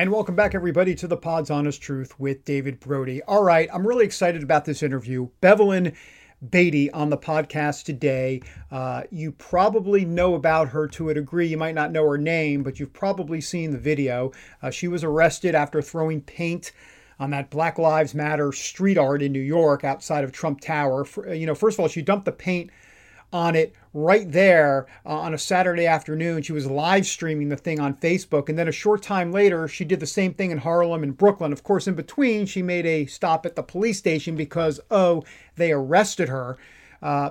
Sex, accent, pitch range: male, American, 145-180 Hz